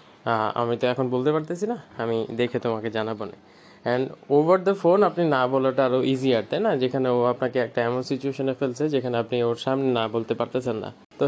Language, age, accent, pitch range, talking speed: Bengali, 20-39, native, 120-145 Hz, 190 wpm